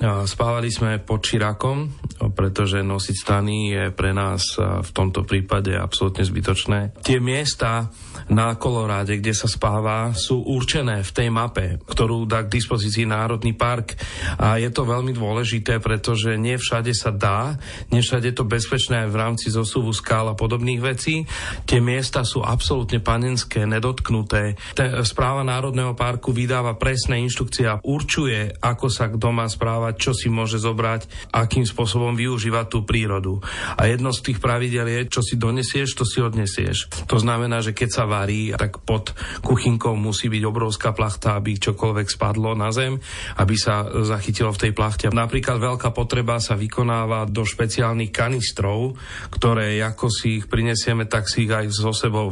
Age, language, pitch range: 40-59, Slovak, 105-120 Hz